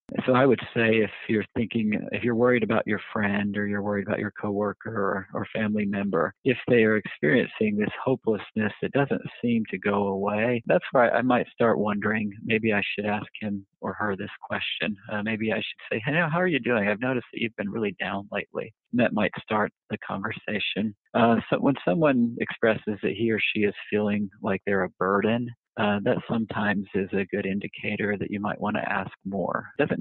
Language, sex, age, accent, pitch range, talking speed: English, male, 50-69, American, 100-110 Hz, 205 wpm